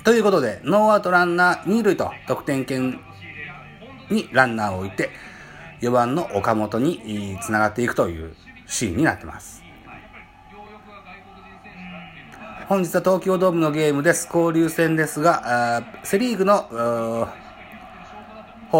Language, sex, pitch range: Japanese, male, 110-170 Hz